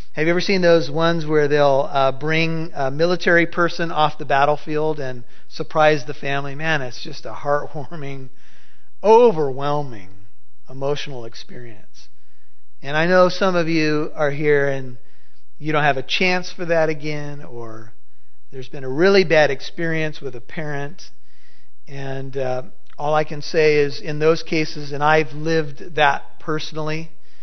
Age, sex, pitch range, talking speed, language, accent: 50-69, male, 135-160 Hz, 155 wpm, English, American